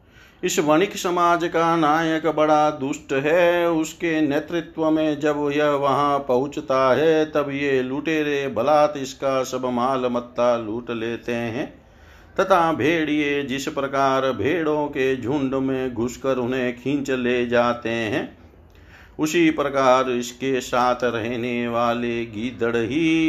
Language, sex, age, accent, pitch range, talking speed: Hindi, male, 50-69, native, 125-150 Hz, 125 wpm